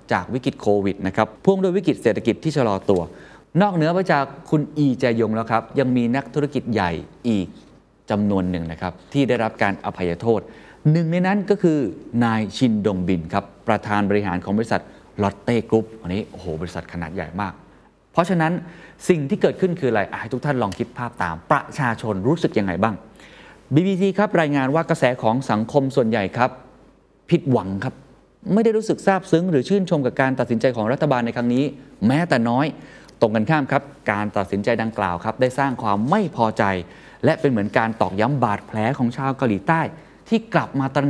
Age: 20-39